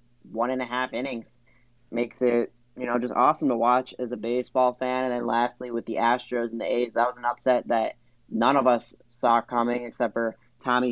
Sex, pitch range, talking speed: male, 115-130 Hz, 215 wpm